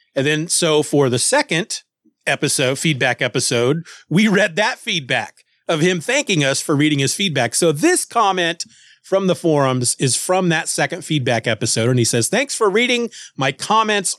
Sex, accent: male, American